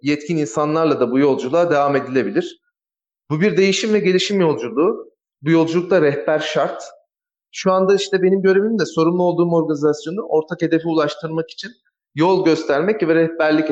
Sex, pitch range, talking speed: male, 155-190 Hz, 150 wpm